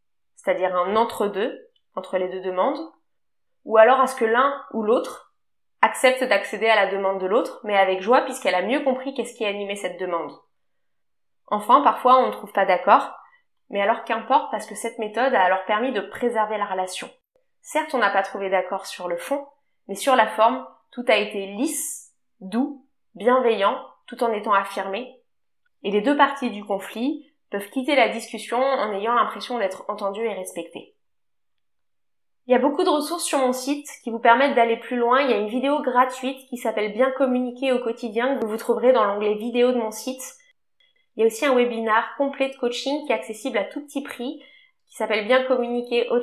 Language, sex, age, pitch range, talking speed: French, female, 20-39, 210-265 Hz, 205 wpm